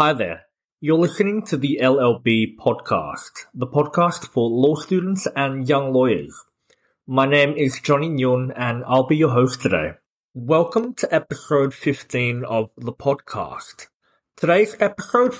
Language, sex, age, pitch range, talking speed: English, male, 30-49, 125-155 Hz, 140 wpm